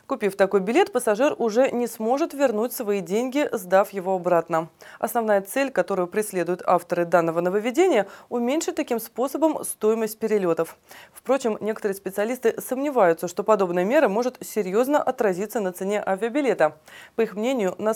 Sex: female